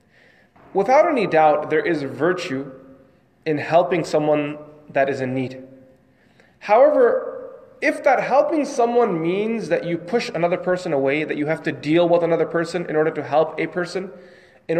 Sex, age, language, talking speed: male, 20-39, English, 160 wpm